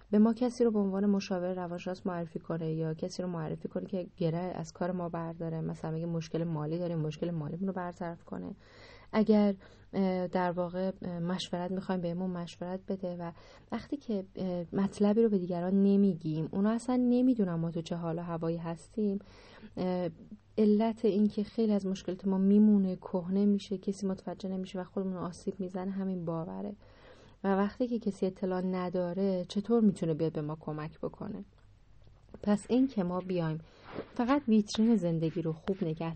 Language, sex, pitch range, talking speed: Persian, female, 175-215 Hz, 170 wpm